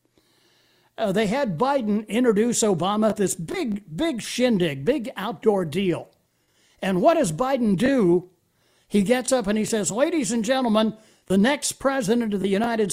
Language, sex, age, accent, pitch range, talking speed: English, male, 60-79, American, 165-245 Hz, 155 wpm